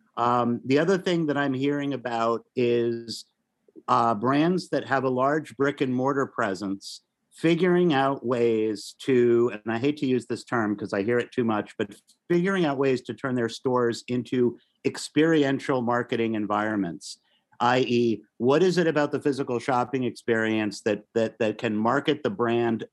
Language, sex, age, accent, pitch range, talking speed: English, male, 50-69, American, 115-150 Hz, 165 wpm